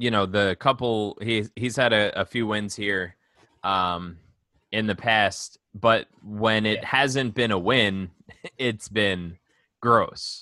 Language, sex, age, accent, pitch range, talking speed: English, male, 20-39, American, 100-115 Hz, 150 wpm